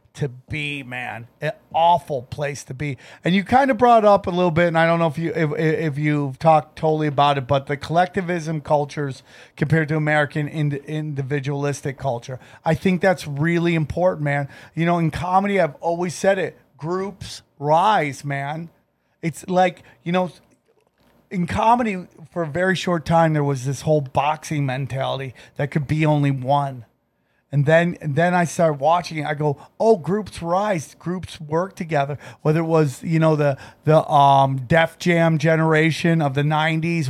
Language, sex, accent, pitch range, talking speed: English, male, American, 145-175 Hz, 175 wpm